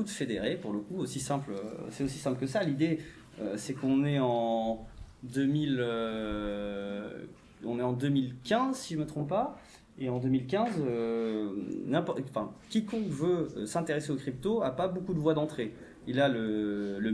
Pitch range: 120-160 Hz